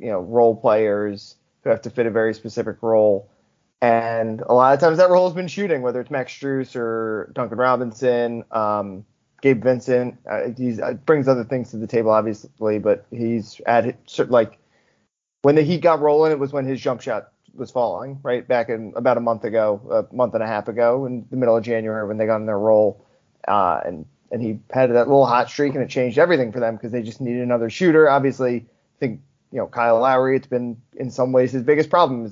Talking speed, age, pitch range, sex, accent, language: 225 wpm, 20-39, 115-135 Hz, male, American, English